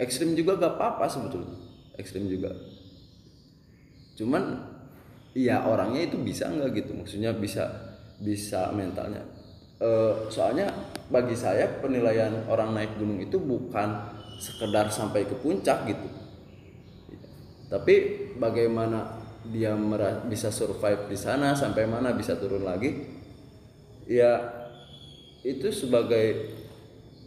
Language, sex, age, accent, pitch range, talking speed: Indonesian, male, 20-39, native, 100-125 Hz, 110 wpm